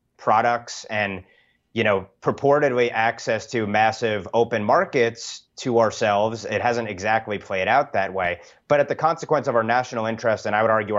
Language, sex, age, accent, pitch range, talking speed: English, male, 30-49, American, 100-125 Hz, 170 wpm